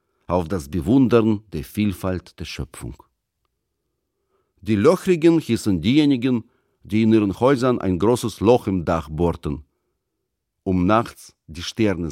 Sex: male